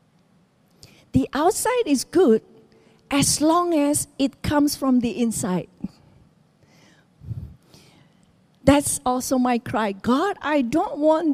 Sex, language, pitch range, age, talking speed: female, English, 250-335 Hz, 40-59, 105 wpm